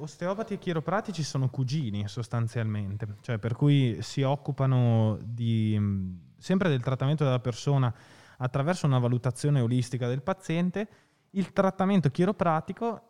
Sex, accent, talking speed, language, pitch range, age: male, native, 115 wpm, Italian, 120-160 Hz, 20-39